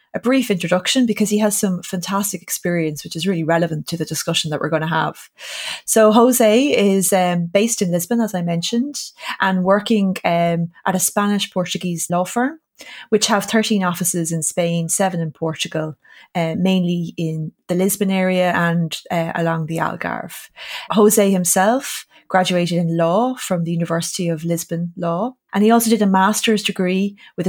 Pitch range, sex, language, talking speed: 170-205 Hz, female, English, 170 wpm